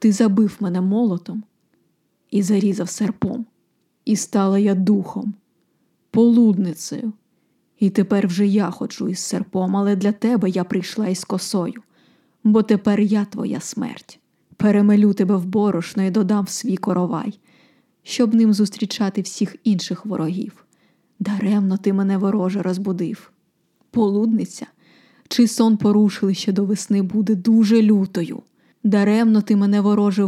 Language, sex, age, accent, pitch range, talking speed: Ukrainian, female, 20-39, native, 195-220 Hz, 130 wpm